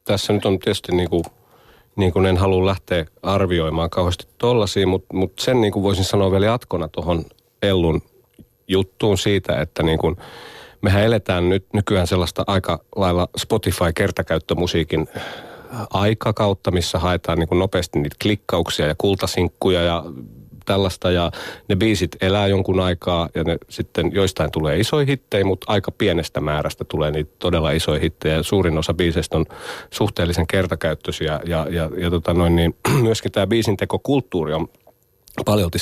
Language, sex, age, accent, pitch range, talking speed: Finnish, male, 30-49, native, 85-100 Hz, 150 wpm